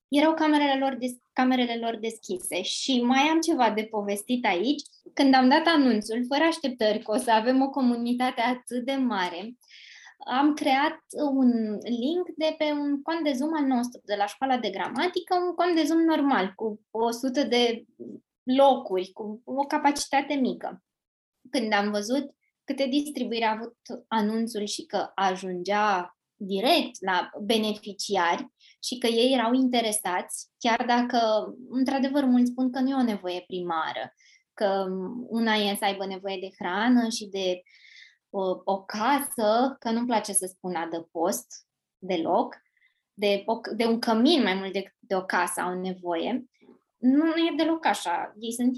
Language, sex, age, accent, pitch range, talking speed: Romanian, female, 20-39, native, 210-275 Hz, 155 wpm